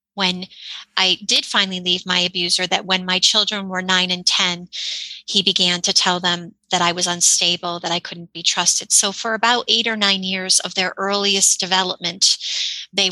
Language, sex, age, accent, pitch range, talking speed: English, female, 30-49, American, 180-215 Hz, 190 wpm